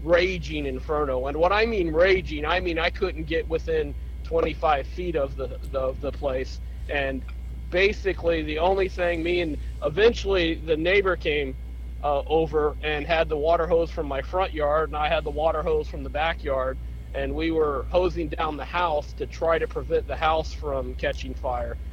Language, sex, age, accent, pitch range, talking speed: English, male, 40-59, American, 130-175 Hz, 185 wpm